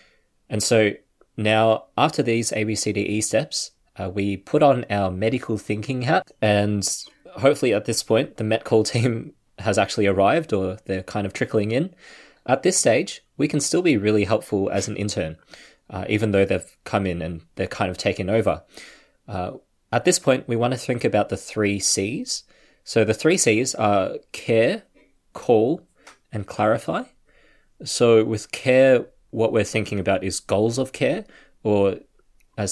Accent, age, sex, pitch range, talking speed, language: Australian, 20-39, male, 100-115 Hz, 170 wpm, English